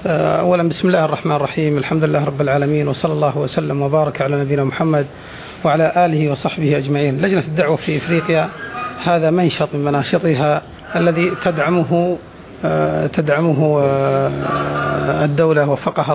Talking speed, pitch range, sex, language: 125 wpm, 145-170 Hz, male, Arabic